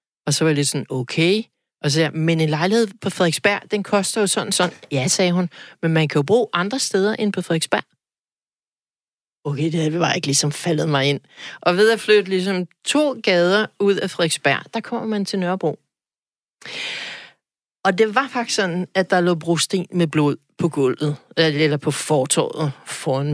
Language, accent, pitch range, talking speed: Danish, native, 155-200 Hz, 190 wpm